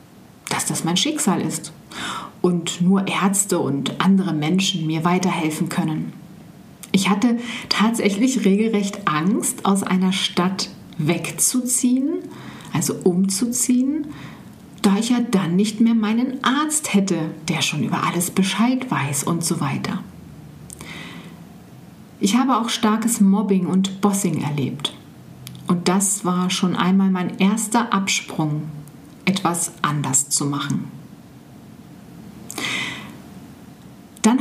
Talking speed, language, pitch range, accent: 110 wpm, German, 170-225 Hz, German